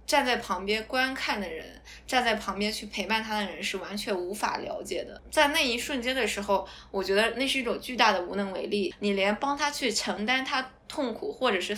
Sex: female